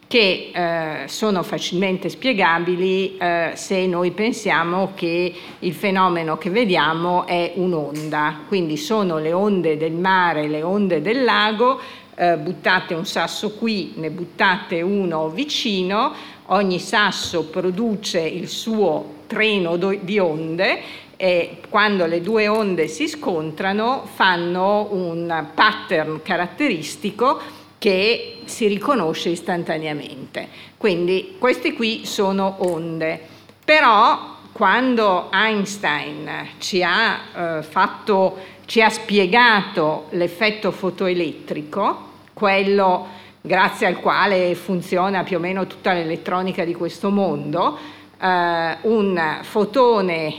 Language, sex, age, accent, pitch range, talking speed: Italian, female, 50-69, native, 170-210 Hz, 110 wpm